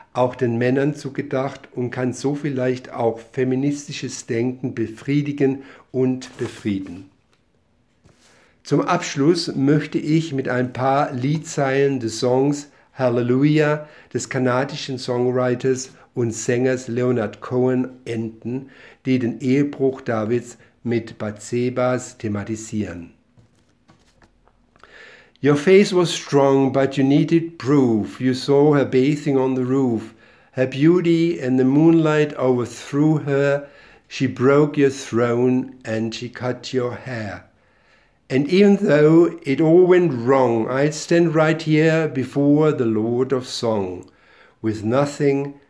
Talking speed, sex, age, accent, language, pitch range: 115 wpm, male, 60-79, German, German, 120-140 Hz